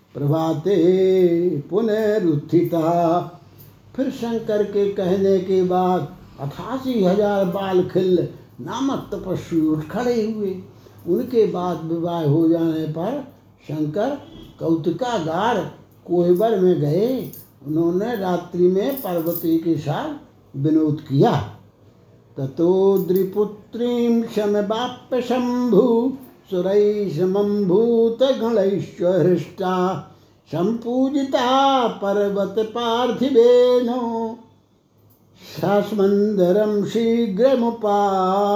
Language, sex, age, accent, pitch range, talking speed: Hindi, male, 60-79, native, 175-235 Hz, 75 wpm